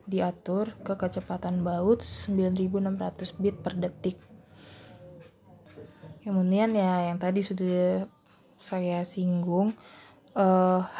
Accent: native